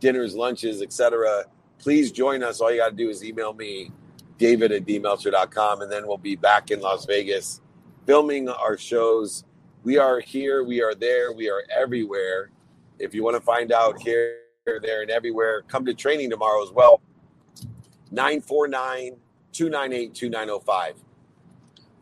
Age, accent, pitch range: 50-69, American, 110-145 Hz